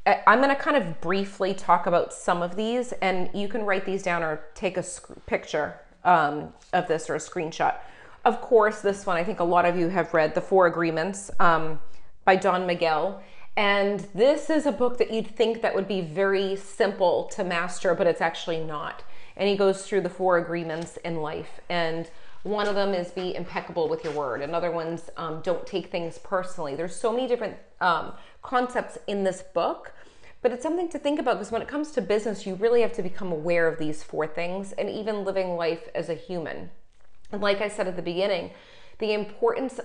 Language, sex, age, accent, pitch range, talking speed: English, female, 30-49, American, 175-220 Hz, 210 wpm